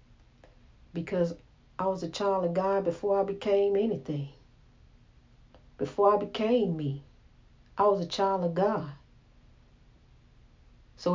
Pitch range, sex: 145-200 Hz, female